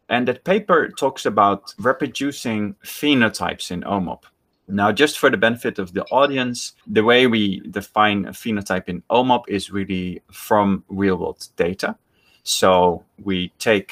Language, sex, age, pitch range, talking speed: English, male, 30-49, 95-110 Hz, 140 wpm